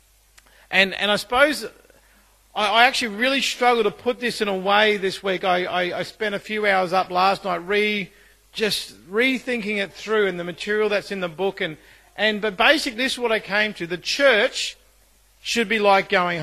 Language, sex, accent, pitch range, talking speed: English, male, Australian, 195-240 Hz, 195 wpm